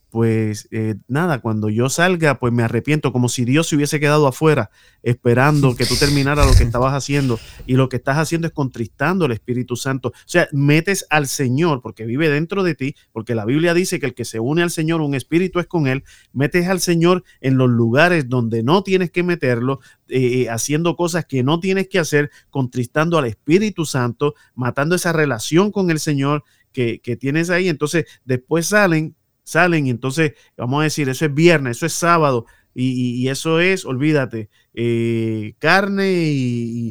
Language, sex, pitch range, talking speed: Spanish, male, 120-160 Hz, 190 wpm